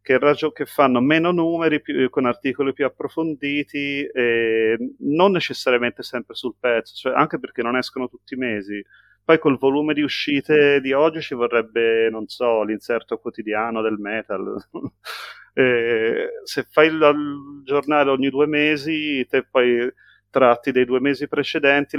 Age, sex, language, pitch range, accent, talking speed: 30-49, male, Italian, 115-145 Hz, native, 145 wpm